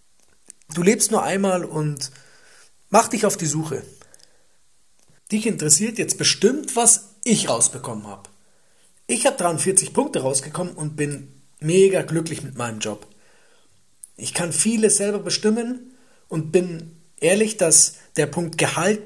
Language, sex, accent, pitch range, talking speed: German, male, German, 140-175 Hz, 130 wpm